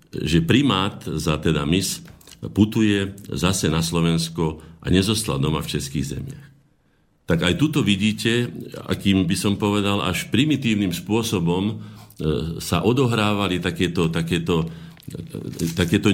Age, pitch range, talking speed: 50-69, 75-105 Hz, 115 wpm